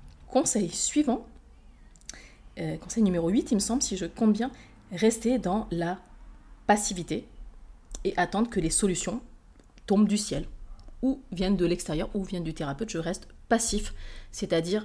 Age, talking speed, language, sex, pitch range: 30-49, 150 wpm, French, female, 165-215 Hz